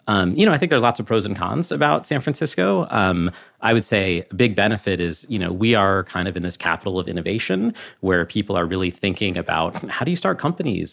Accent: American